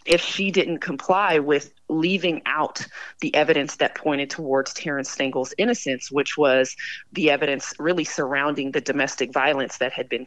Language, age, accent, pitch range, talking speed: English, 30-49, American, 140-170 Hz, 160 wpm